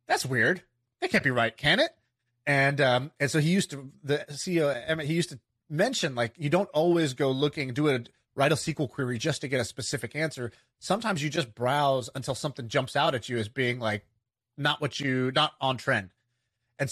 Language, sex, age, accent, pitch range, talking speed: English, male, 30-49, American, 120-150 Hz, 215 wpm